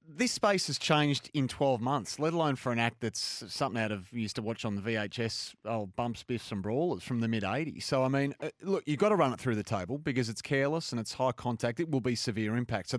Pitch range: 110-140 Hz